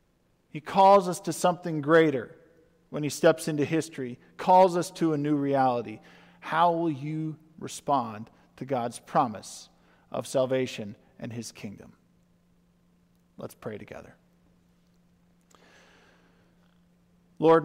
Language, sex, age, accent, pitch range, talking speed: English, male, 50-69, American, 145-185 Hz, 110 wpm